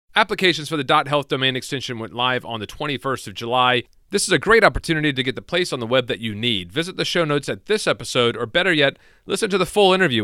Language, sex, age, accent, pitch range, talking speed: English, male, 40-59, American, 120-150 Hz, 250 wpm